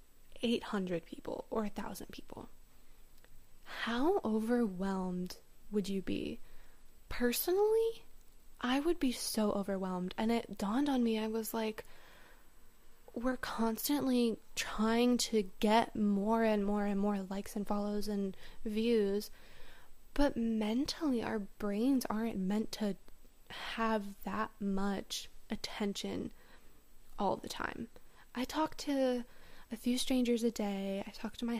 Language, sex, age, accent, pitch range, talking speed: English, female, 20-39, American, 205-250 Hz, 125 wpm